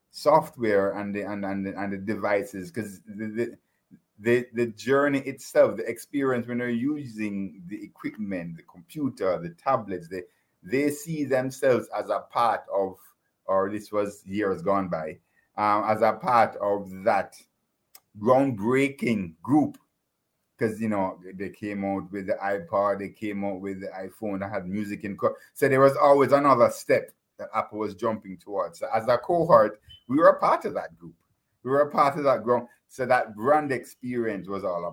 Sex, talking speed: male, 180 wpm